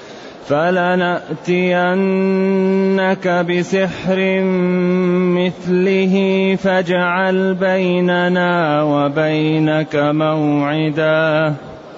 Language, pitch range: Arabic, 155-185 Hz